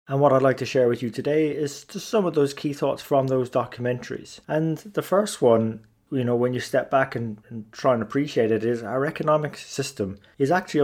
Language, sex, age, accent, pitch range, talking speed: English, male, 20-39, British, 115-135 Hz, 225 wpm